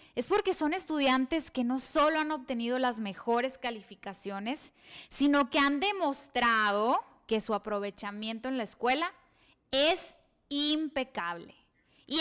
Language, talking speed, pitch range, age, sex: Spanish, 125 wpm, 220-295 Hz, 10-29, female